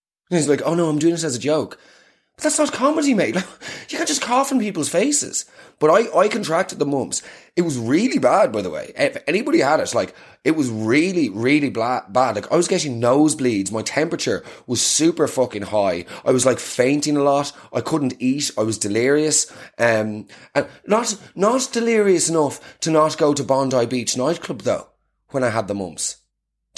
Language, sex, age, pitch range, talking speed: English, male, 20-39, 135-185 Hz, 200 wpm